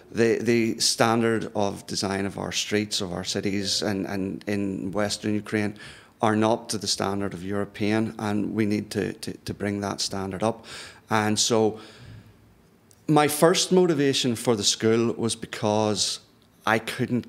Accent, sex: British, male